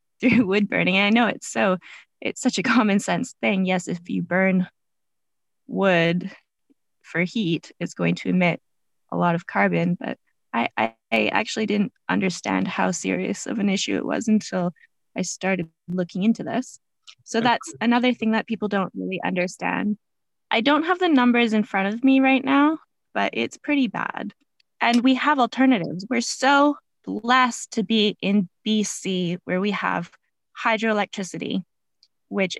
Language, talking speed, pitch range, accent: English, 165 wpm, 185-235 Hz, American